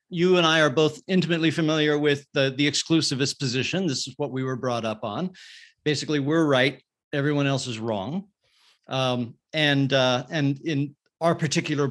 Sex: male